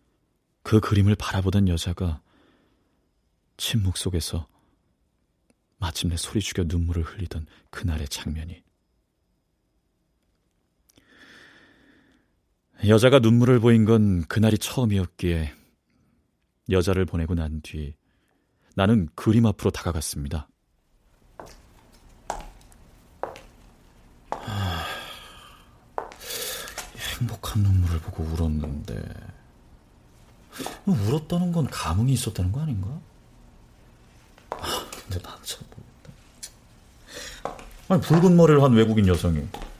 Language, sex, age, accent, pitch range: Korean, male, 30-49, native, 85-115 Hz